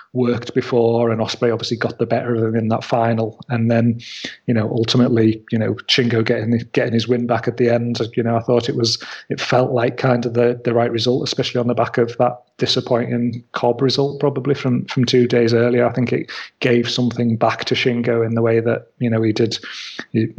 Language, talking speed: English, 225 wpm